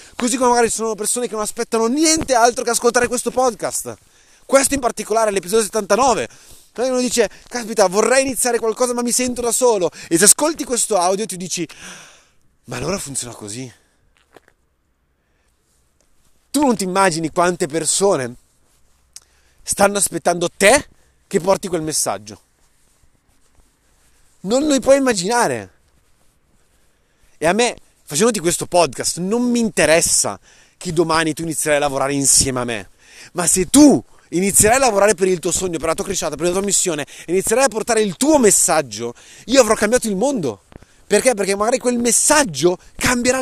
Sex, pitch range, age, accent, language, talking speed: male, 160-245 Hz, 30-49, native, Italian, 160 wpm